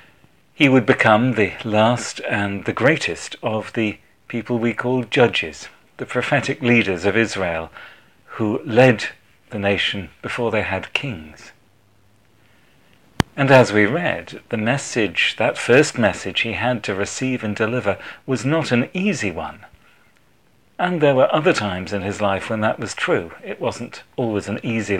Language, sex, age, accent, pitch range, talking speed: English, male, 40-59, British, 100-130 Hz, 155 wpm